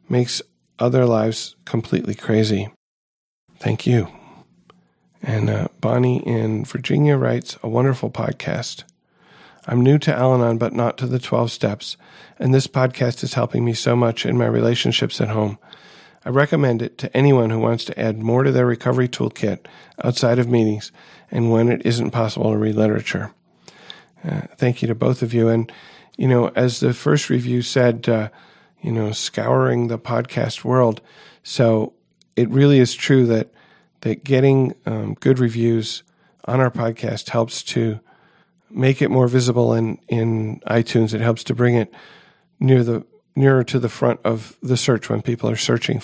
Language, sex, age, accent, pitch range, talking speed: English, male, 40-59, American, 115-130 Hz, 165 wpm